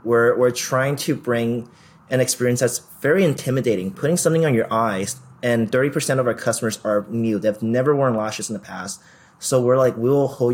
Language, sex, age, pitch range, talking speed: English, male, 30-49, 105-130 Hz, 200 wpm